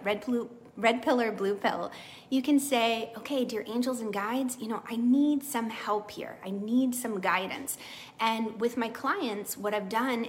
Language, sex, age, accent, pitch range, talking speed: English, female, 30-49, American, 205-255 Hz, 190 wpm